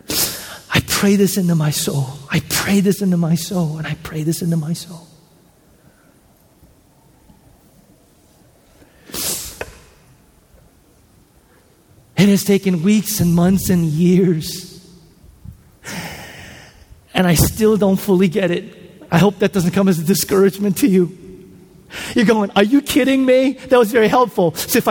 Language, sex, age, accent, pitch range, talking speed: English, male, 40-59, American, 165-210 Hz, 135 wpm